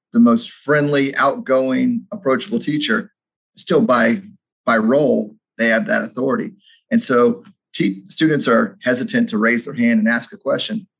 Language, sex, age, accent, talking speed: English, male, 30-49, American, 155 wpm